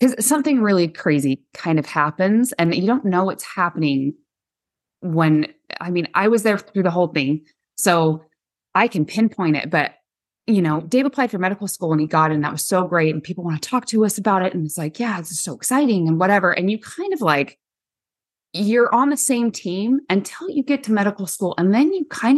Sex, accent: female, American